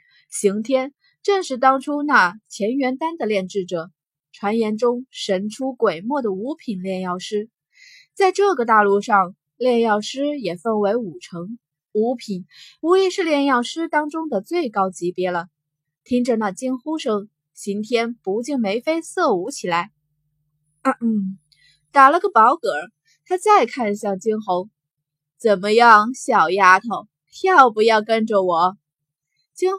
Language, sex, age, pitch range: Chinese, female, 20-39, 180-265 Hz